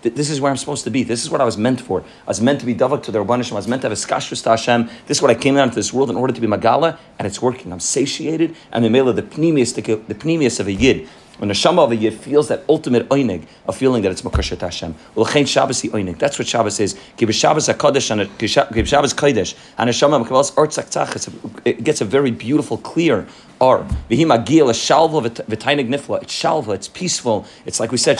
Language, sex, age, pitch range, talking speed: English, male, 30-49, 110-140 Hz, 220 wpm